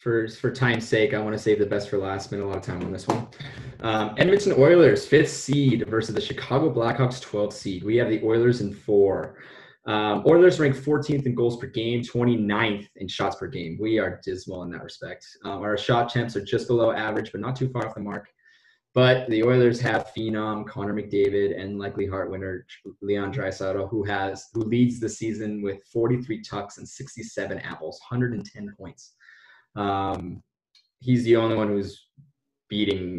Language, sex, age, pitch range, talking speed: English, male, 20-39, 100-125 Hz, 190 wpm